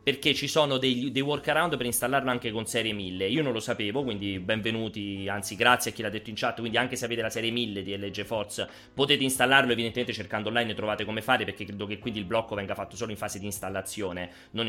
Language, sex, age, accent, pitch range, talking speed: Italian, male, 30-49, native, 105-135 Hz, 240 wpm